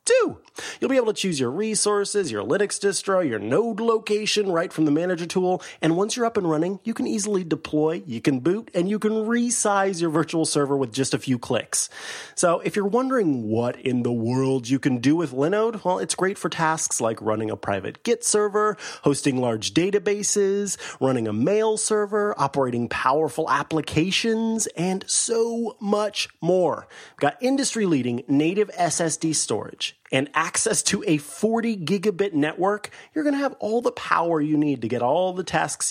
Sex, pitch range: male, 145-210 Hz